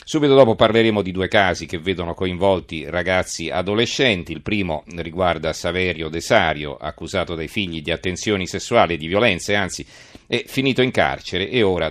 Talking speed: 160 wpm